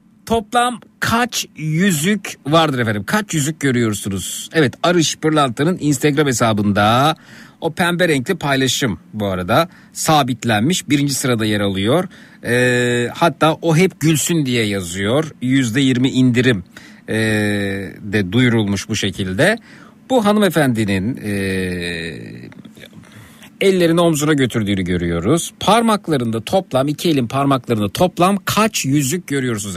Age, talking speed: 50-69, 105 wpm